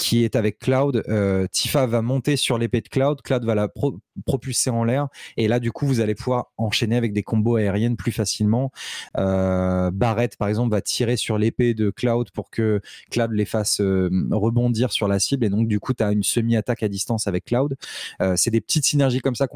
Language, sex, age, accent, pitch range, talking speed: French, male, 20-39, French, 105-135 Hz, 220 wpm